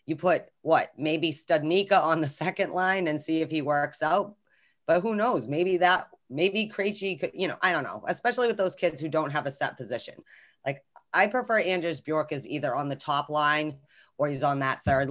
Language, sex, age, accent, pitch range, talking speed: English, female, 30-49, American, 145-175 Hz, 215 wpm